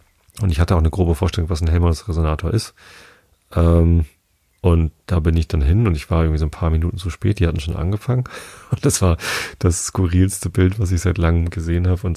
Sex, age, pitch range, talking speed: male, 30-49, 85-100 Hz, 225 wpm